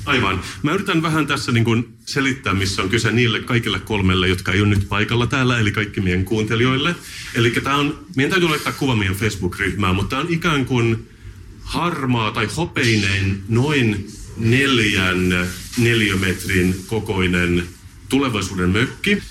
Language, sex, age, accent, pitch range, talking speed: Finnish, male, 40-59, native, 95-120 Hz, 145 wpm